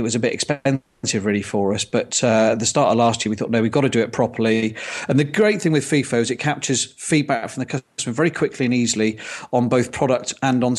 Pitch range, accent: 115-130 Hz, British